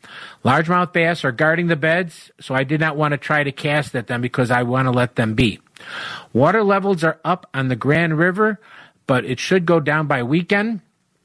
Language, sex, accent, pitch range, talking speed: English, male, American, 130-170 Hz, 210 wpm